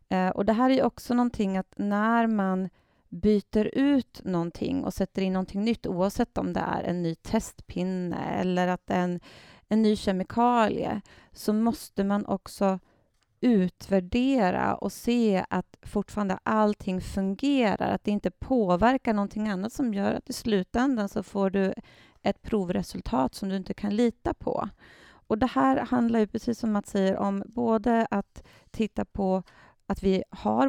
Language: Swedish